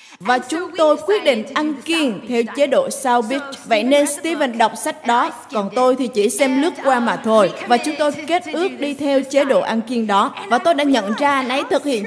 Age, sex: 20-39, female